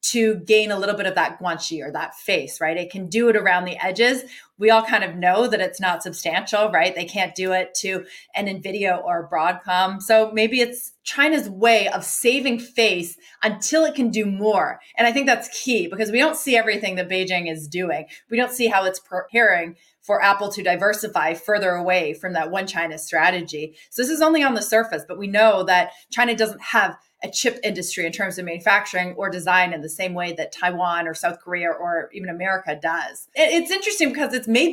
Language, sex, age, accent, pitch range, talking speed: English, female, 30-49, American, 180-230 Hz, 210 wpm